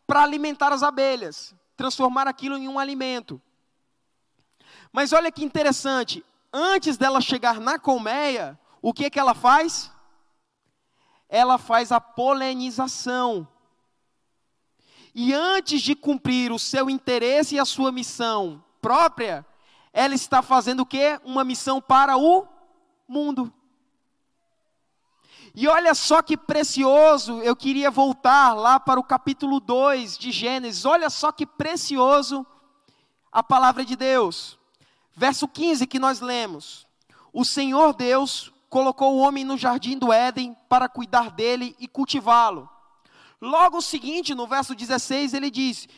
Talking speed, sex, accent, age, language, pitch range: 130 wpm, male, Brazilian, 20-39, Portuguese, 245-285 Hz